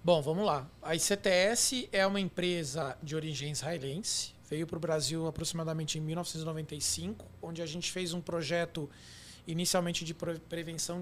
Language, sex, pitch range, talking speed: Portuguese, male, 160-195 Hz, 145 wpm